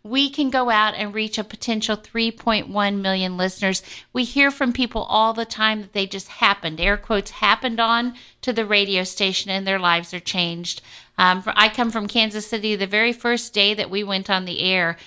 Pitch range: 185-230 Hz